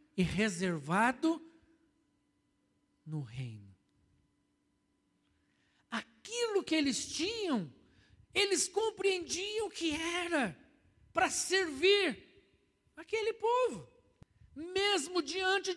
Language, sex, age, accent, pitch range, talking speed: Portuguese, male, 60-79, Brazilian, 255-370 Hz, 70 wpm